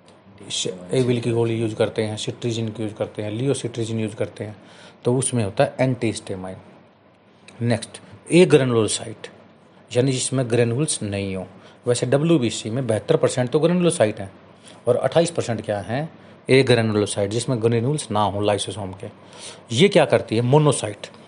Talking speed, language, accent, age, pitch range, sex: 155 wpm, Hindi, native, 40-59, 110-155 Hz, male